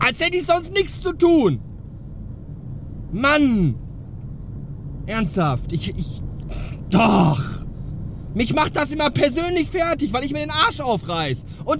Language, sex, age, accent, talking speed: German, male, 40-59, German, 125 wpm